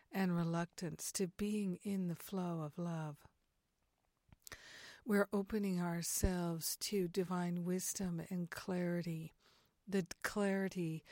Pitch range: 170-195 Hz